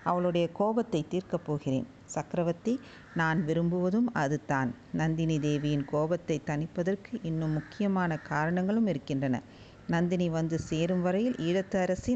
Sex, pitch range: female, 160-205 Hz